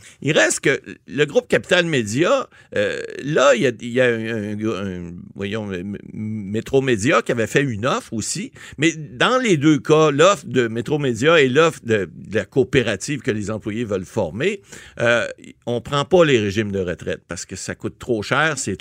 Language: French